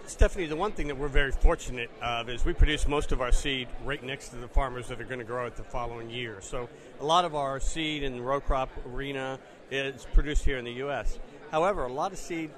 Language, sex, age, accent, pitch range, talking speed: English, male, 40-59, American, 120-145 Hz, 250 wpm